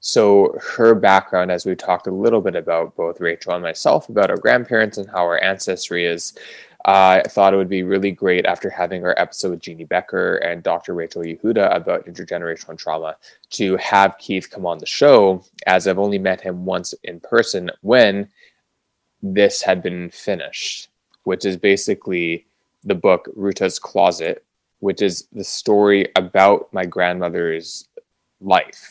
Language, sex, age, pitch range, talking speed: English, male, 20-39, 85-95 Hz, 165 wpm